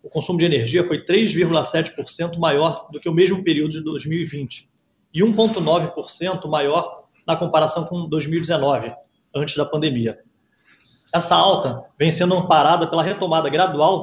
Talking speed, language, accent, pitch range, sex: 135 wpm, Portuguese, Brazilian, 145-175 Hz, male